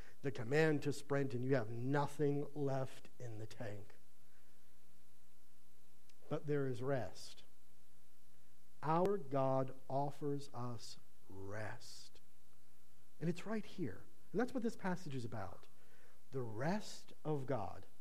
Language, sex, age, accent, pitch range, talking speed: English, male, 50-69, American, 120-195 Hz, 120 wpm